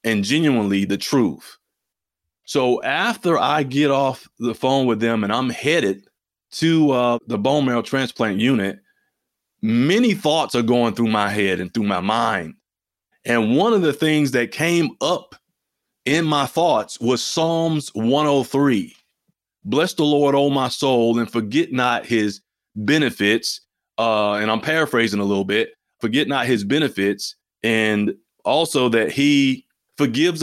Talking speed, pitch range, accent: 150 wpm, 115-150 Hz, American